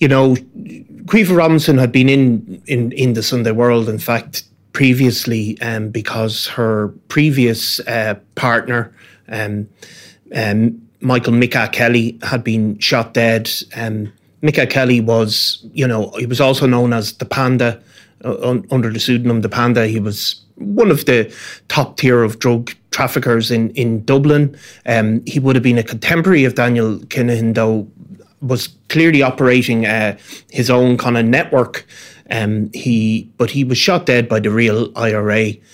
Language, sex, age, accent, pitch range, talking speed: English, male, 30-49, Irish, 110-125 Hz, 160 wpm